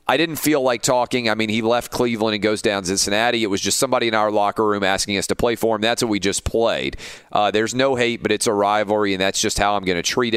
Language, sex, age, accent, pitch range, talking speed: English, male, 40-59, American, 100-115 Hz, 285 wpm